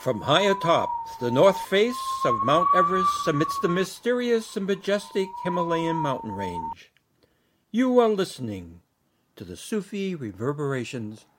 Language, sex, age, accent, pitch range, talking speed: English, male, 60-79, American, 125-160 Hz, 125 wpm